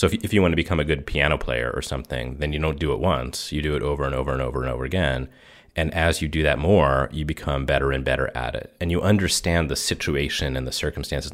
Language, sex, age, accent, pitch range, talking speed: English, male, 30-49, American, 70-95 Hz, 270 wpm